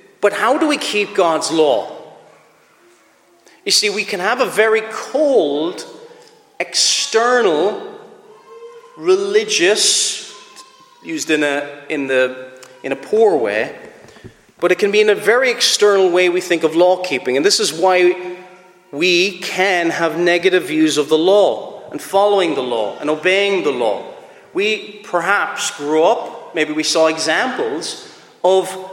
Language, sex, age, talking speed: English, male, 40-59, 145 wpm